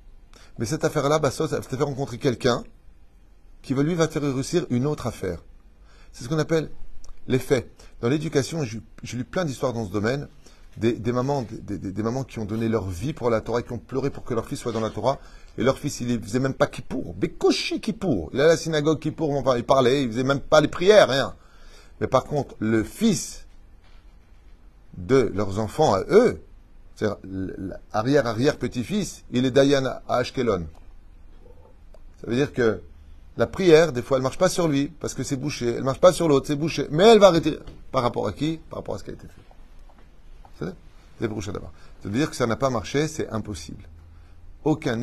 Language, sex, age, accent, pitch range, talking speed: French, male, 30-49, French, 100-140 Hz, 215 wpm